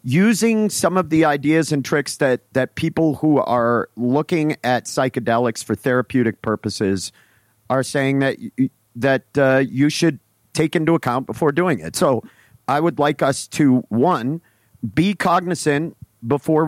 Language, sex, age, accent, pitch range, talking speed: English, male, 50-69, American, 115-150 Hz, 150 wpm